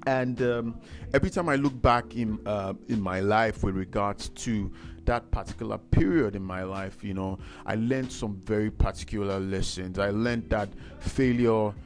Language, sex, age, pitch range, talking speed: English, male, 30-49, 95-105 Hz, 165 wpm